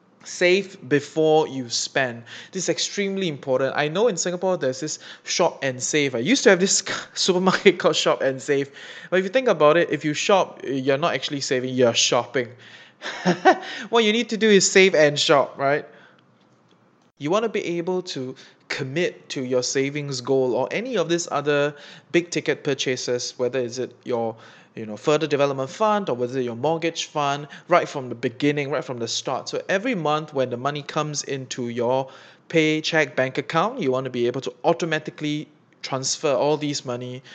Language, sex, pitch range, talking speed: English, male, 130-165 Hz, 190 wpm